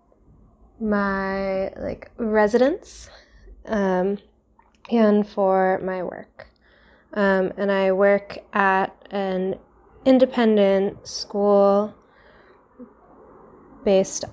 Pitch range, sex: 180-210 Hz, female